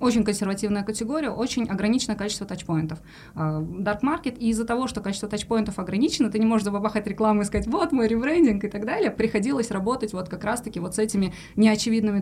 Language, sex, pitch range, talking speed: Russian, female, 185-230 Hz, 180 wpm